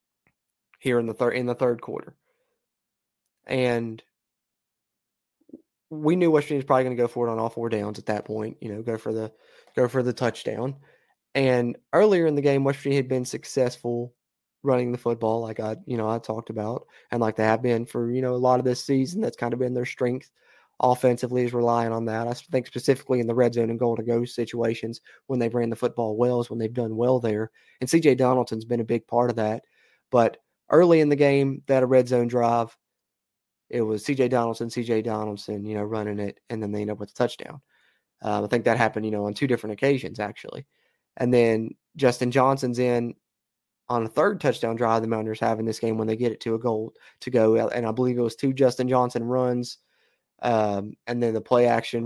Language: English